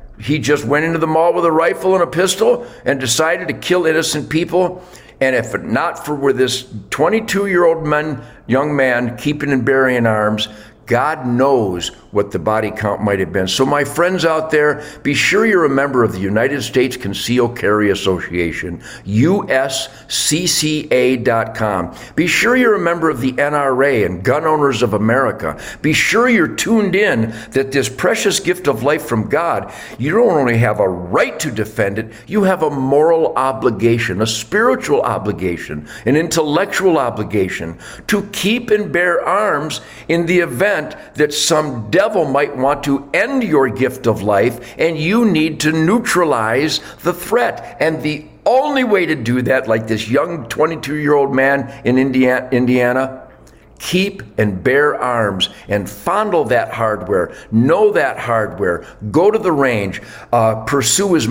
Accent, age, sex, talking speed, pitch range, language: American, 50-69, male, 160 wpm, 120-165 Hz, English